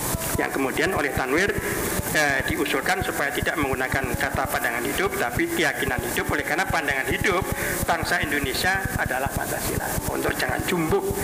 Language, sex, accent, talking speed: Indonesian, male, native, 145 wpm